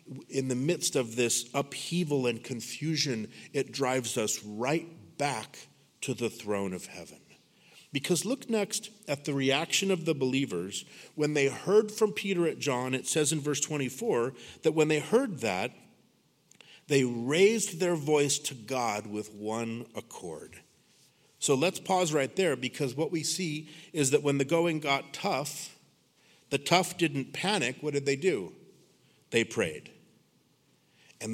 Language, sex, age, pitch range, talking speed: English, male, 50-69, 120-160 Hz, 155 wpm